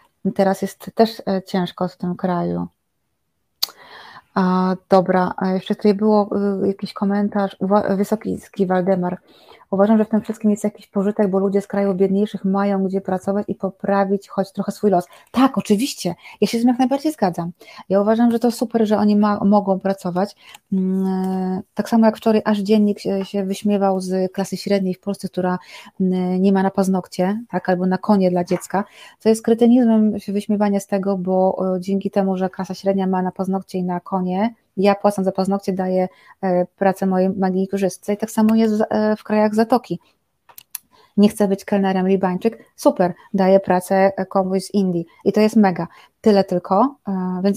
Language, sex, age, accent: Polish, female, 30-49, native